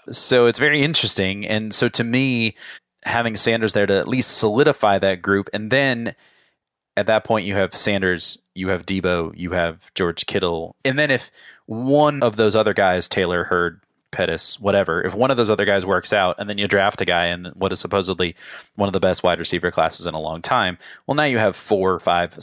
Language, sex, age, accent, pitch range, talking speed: English, male, 30-49, American, 90-110 Hz, 215 wpm